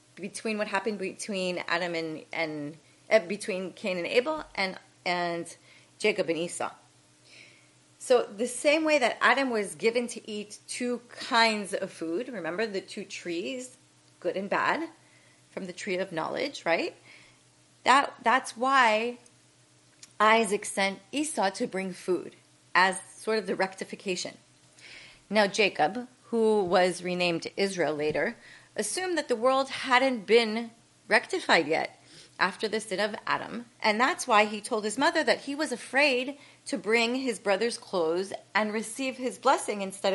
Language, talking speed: English, 150 wpm